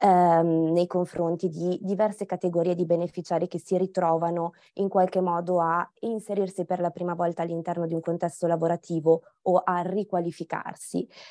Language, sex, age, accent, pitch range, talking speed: Italian, female, 20-39, native, 170-195 Hz, 145 wpm